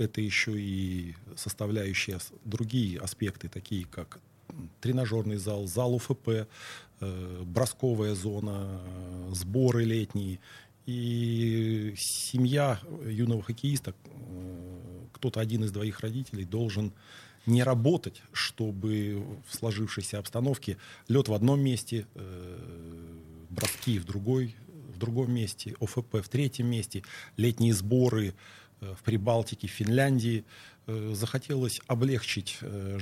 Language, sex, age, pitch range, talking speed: Russian, male, 40-59, 95-120 Hz, 105 wpm